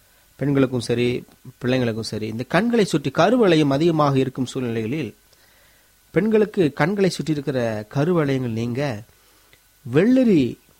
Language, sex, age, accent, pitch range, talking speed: Tamil, male, 30-49, native, 115-150 Hz, 95 wpm